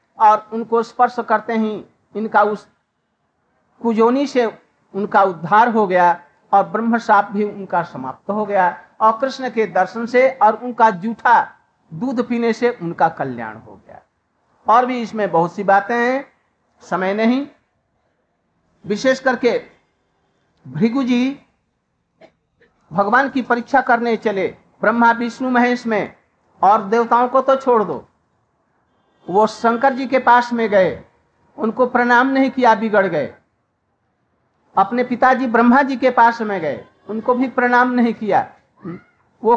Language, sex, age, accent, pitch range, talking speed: Hindi, male, 60-79, native, 215-250 Hz, 135 wpm